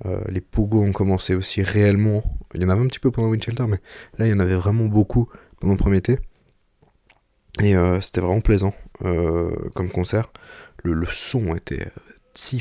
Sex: male